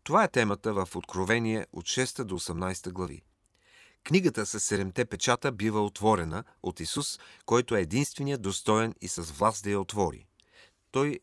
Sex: male